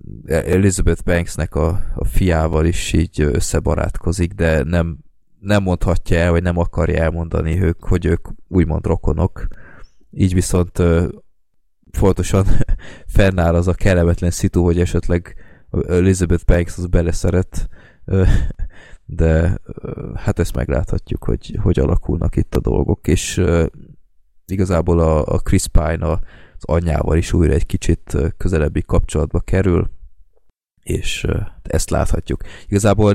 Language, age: Hungarian, 20-39